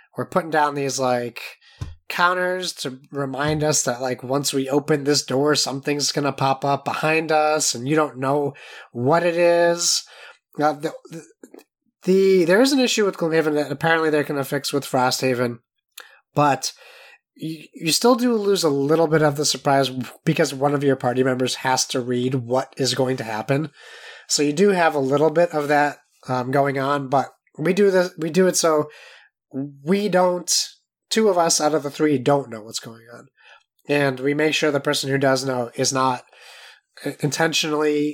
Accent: American